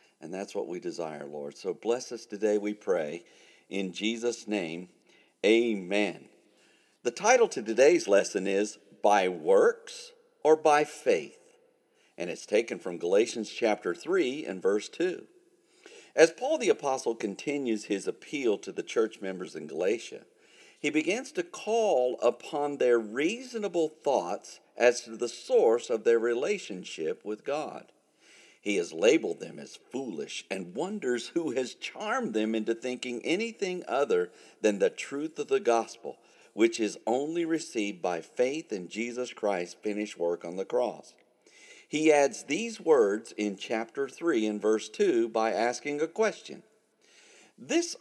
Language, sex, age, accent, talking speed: English, male, 50-69, American, 145 wpm